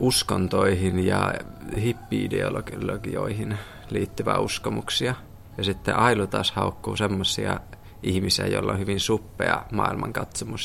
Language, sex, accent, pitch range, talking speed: Finnish, male, native, 100-115 Hz, 95 wpm